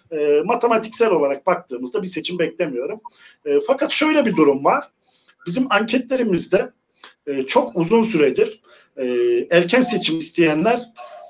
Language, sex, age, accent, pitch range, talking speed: Turkish, male, 50-69, native, 155-235 Hz, 100 wpm